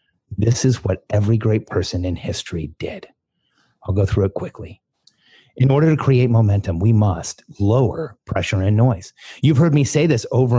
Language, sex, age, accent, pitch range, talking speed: English, male, 30-49, American, 105-135 Hz, 175 wpm